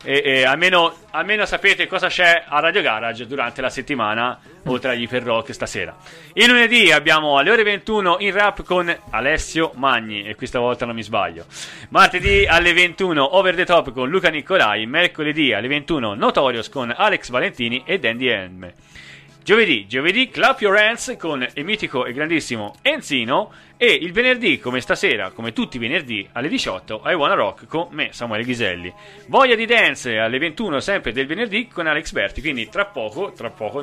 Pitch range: 120-180 Hz